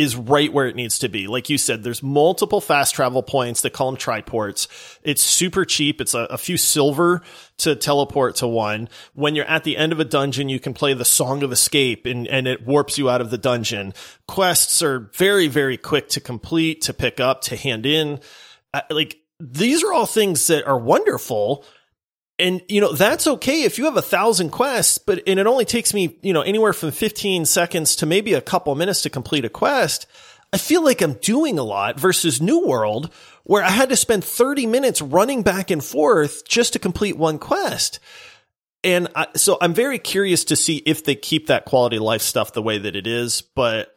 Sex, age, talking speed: male, 30-49, 215 wpm